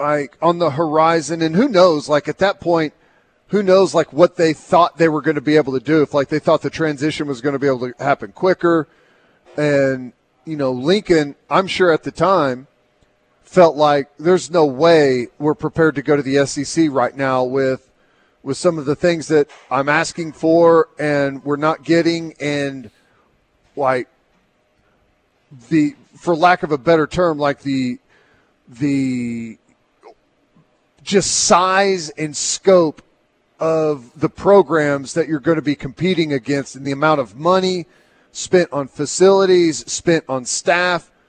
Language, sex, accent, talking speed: English, male, American, 165 wpm